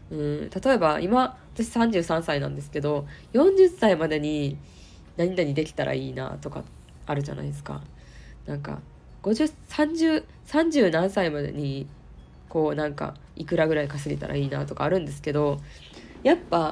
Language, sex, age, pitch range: Japanese, female, 20-39, 145-230 Hz